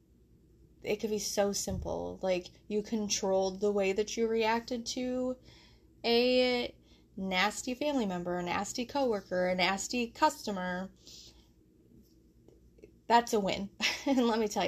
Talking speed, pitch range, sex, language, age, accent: 125 wpm, 175-225 Hz, female, English, 20-39, American